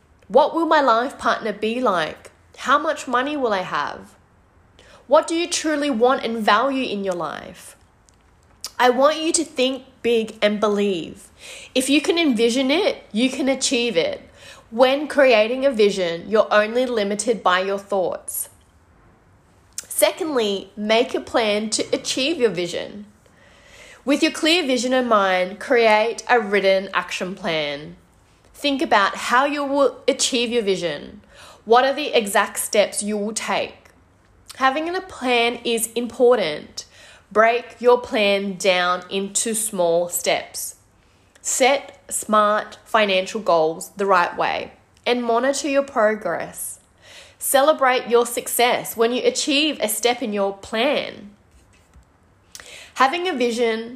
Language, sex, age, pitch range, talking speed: English, female, 20-39, 190-260 Hz, 135 wpm